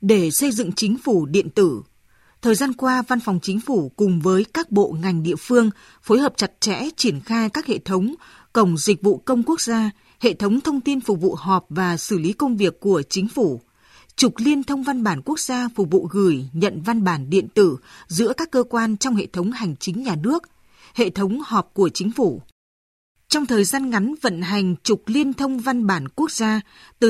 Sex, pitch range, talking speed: female, 190-250 Hz, 215 wpm